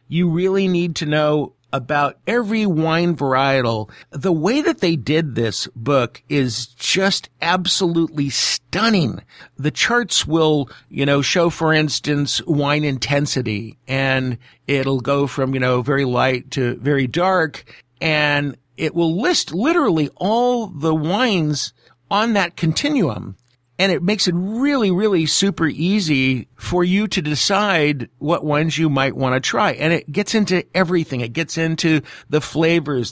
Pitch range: 130-175 Hz